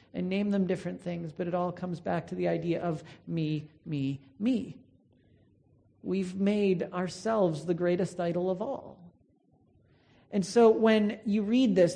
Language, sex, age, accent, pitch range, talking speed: English, male, 40-59, American, 175-220 Hz, 155 wpm